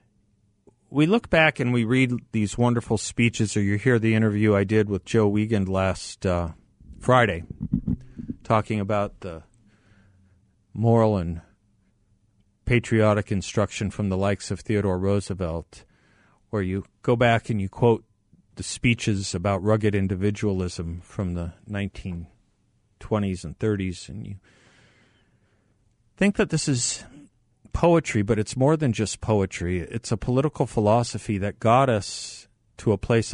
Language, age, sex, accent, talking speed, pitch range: English, 40-59, male, American, 135 wpm, 100-115 Hz